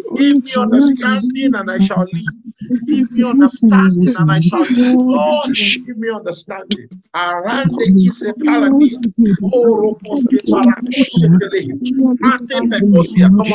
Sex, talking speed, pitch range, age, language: male, 60 wpm, 210-255 Hz, 50-69, English